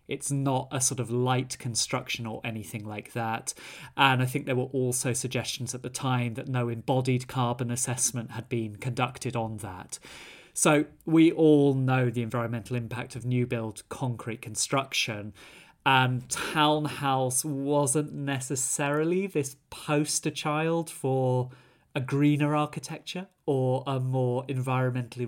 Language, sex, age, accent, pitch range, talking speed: English, male, 30-49, British, 120-145 Hz, 140 wpm